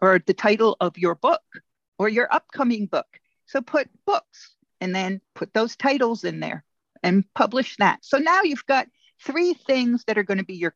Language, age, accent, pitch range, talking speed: English, 50-69, American, 190-265 Hz, 195 wpm